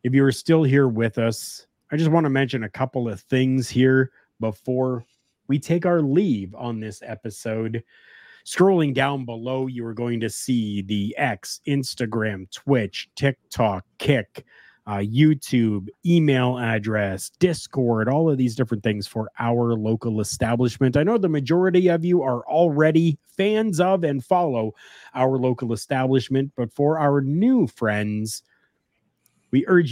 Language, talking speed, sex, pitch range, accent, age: English, 150 wpm, male, 115-150 Hz, American, 30-49